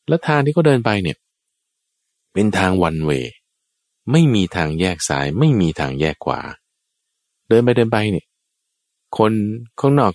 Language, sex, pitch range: Thai, male, 75-115 Hz